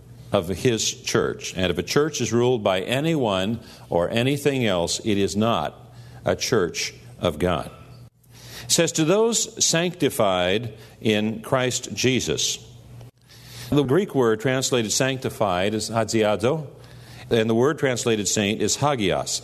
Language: English